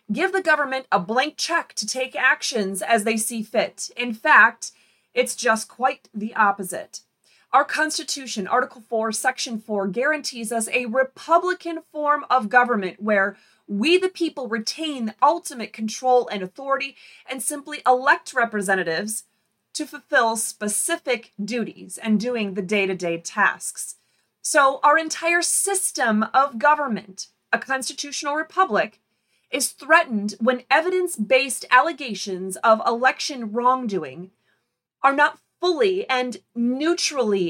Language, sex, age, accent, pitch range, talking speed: English, female, 30-49, American, 210-285 Hz, 125 wpm